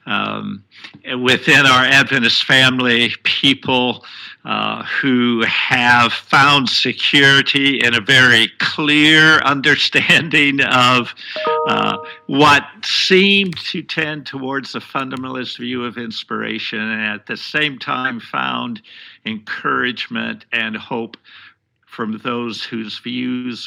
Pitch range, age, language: 115-150 Hz, 60-79, English